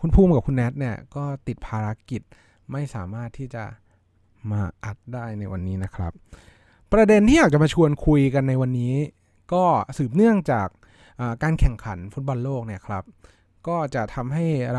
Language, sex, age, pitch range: Thai, male, 20-39, 105-150 Hz